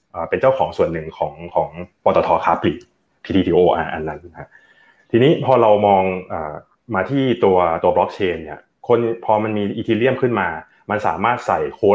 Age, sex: 20-39, male